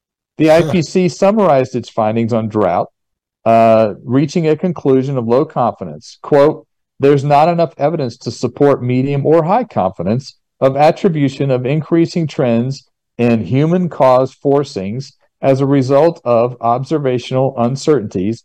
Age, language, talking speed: 50-69, English, 125 wpm